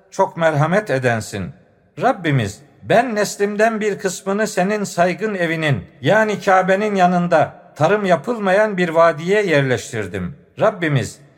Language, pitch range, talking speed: Turkish, 145-195 Hz, 105 wpm